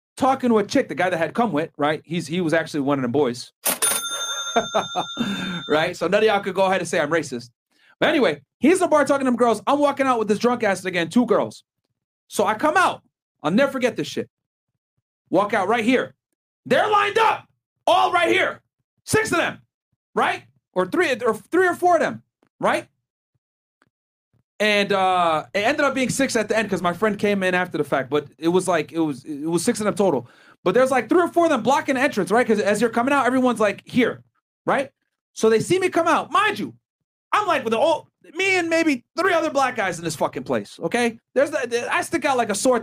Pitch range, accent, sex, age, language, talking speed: 180-275 Hz, American, male, 30-49, English, 235 wpm